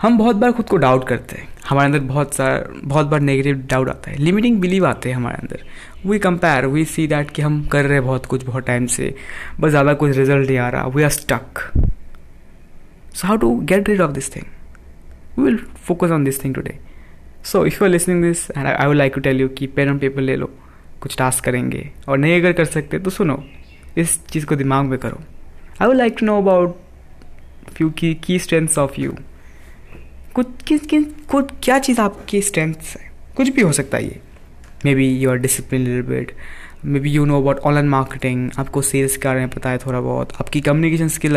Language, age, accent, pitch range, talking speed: Hindi, 20-39, native, 130-160 Hz, 210 wpm